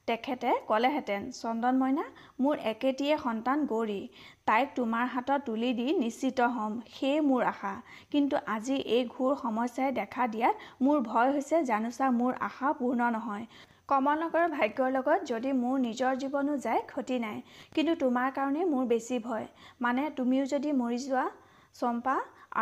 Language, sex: Hindi, female